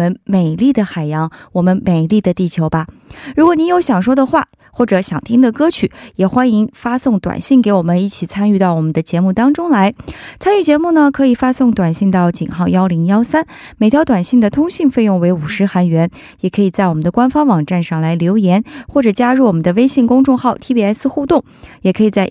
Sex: female